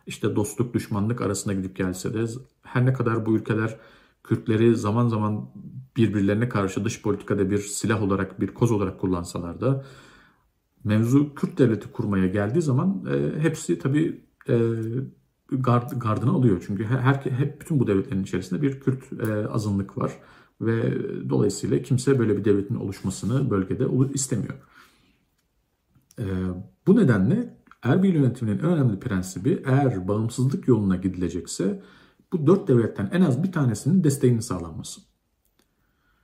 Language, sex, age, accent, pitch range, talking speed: English, male, 50-69, Turkish, 100-135 Hz, 135 wpm